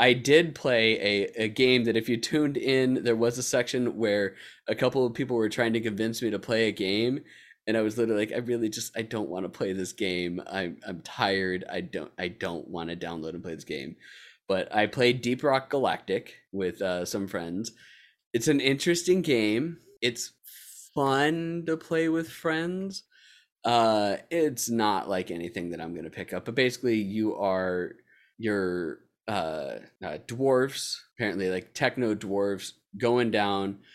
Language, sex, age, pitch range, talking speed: English, male, 20-39, 100-130 Hz, 180 wpm